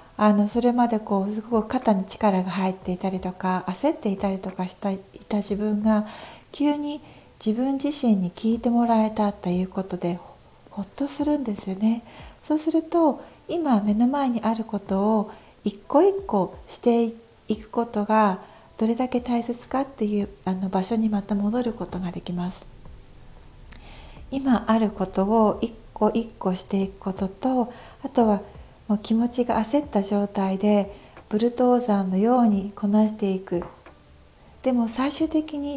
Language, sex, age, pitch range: Japanese, female, 60-79, 205-245 Hz